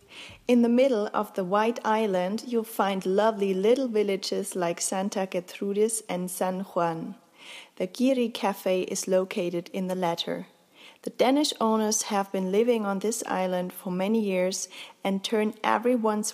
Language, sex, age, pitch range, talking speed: English, female, 30-49, 185-220 Hz, 150 wpm